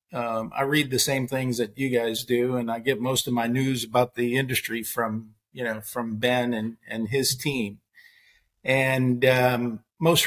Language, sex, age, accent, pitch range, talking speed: English, male, 50-69, American, 120-140 Hz, 185 wpm